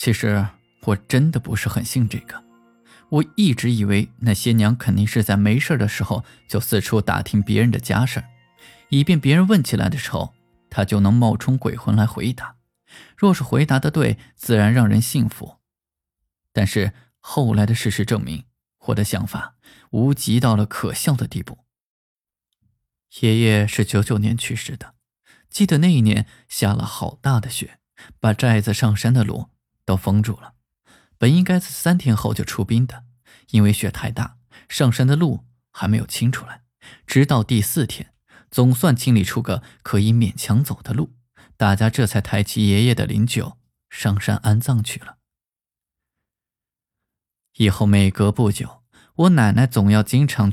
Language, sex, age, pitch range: Chinese, male, 20-39, 105-125 Hz